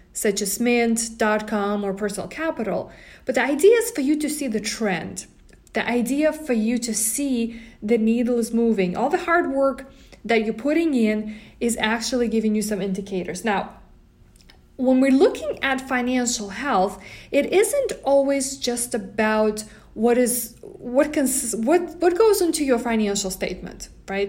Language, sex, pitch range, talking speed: English, female, 220-275 Hz, 155 wpm